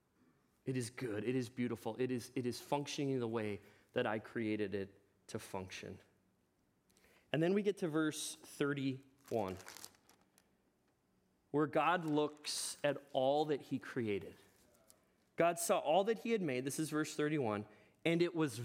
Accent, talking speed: American, 155 wpm